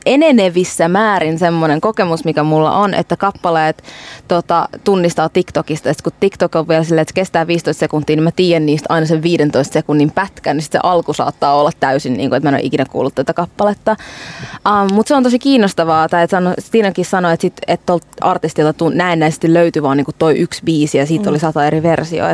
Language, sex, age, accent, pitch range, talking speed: Finnish, female, 20-39, native, 150-175 Hz, 205 wpm